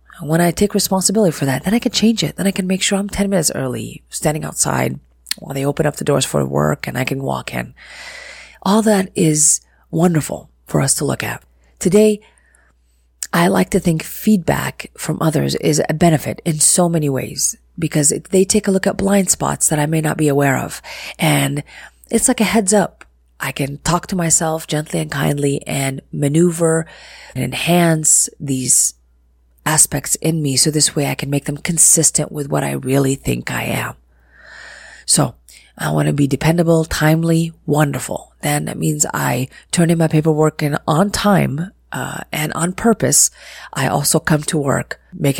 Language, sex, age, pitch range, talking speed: English, female, 30-49, 130-175 Hz, 185 wpm